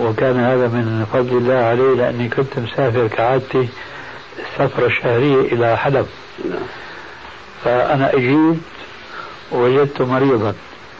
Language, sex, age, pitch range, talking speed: Arabic, male, 60-79, 120-140 Hz, 100 wpm